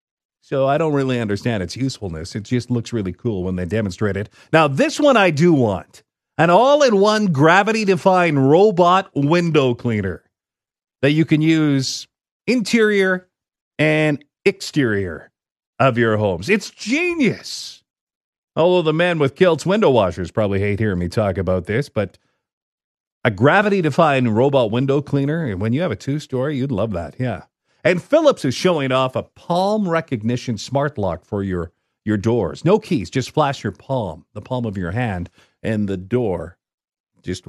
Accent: American